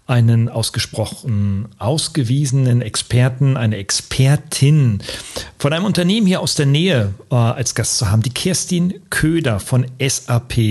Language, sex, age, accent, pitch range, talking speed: German, male, 40-59, German, 115-145 Hz, 130 wpm